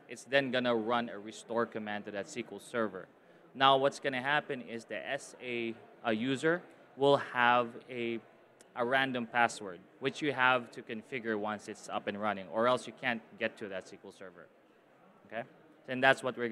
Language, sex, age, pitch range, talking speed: English, male, 20-39, 115-150 Hz, 180 wpm